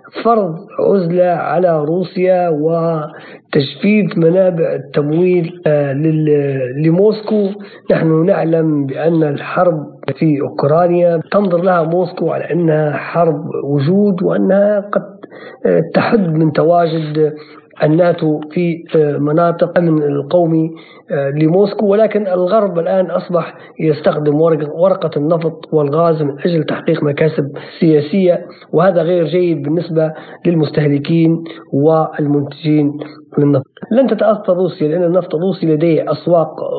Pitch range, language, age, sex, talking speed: 155-180 Hz, Arabic, 50-69, male, 100 wpm